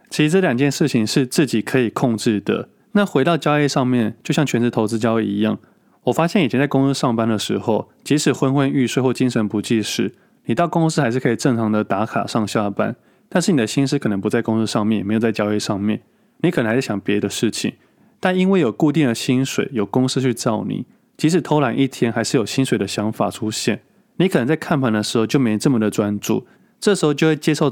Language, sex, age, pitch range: Chinese, male, 20-39, 110-145 Hz